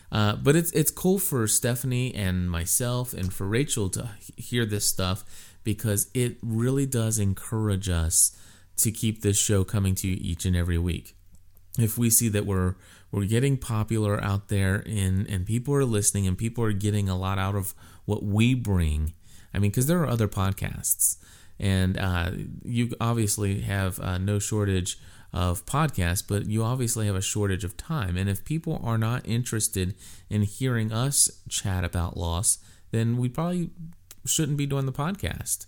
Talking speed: 175 wpm